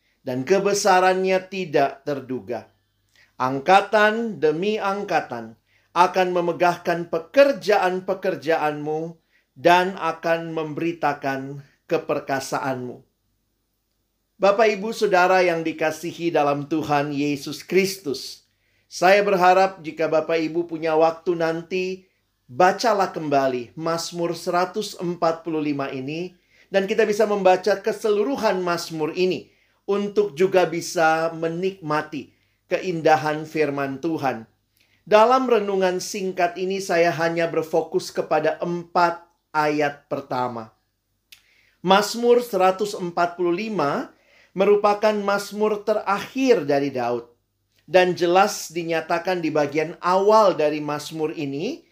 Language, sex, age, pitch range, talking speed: Indonesian, male, 50-69, 145-190 Hz, 90 wpm